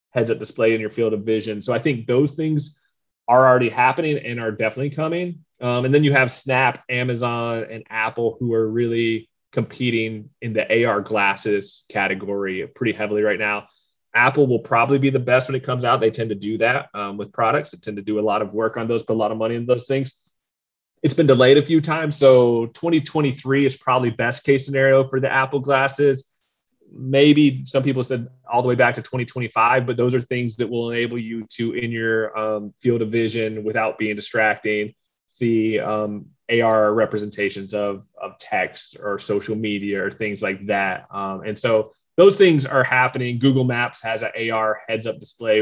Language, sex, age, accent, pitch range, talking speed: English, male, 30-49, American, 105-130 Hz, 200 wpm